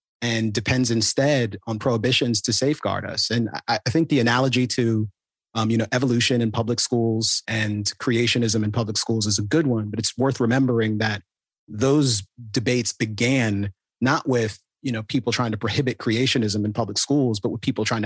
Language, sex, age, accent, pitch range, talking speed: English, male, 30-49, American, 110-125 Hz, 185 wpm